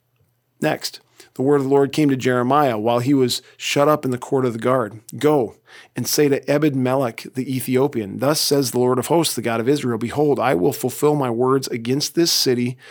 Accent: American